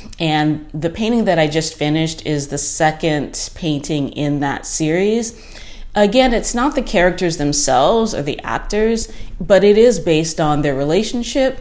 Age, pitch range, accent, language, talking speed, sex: 30-49, 150-190 Hz, American, English, 155 wpm, female